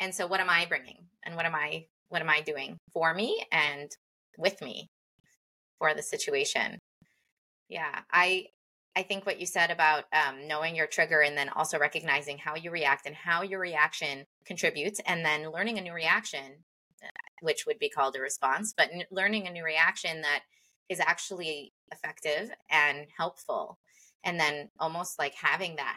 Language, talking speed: English, 175 wpm